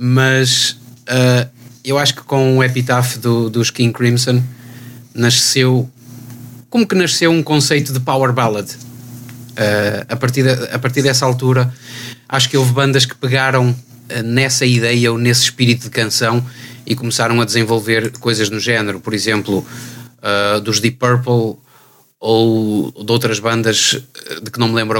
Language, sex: Portuguese, male